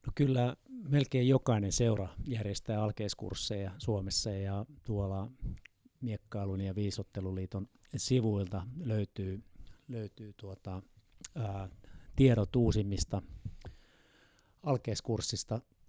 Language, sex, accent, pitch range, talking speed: Finnish, male, native, 100-120 Hz, 80 wpm